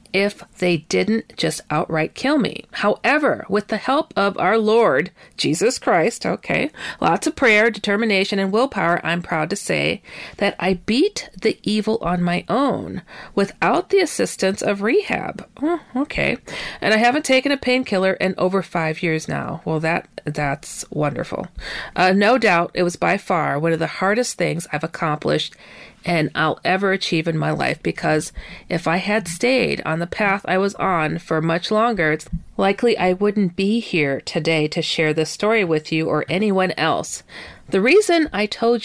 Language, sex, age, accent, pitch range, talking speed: English, female, 40-59, American, 165-225 Hz, 175 wpm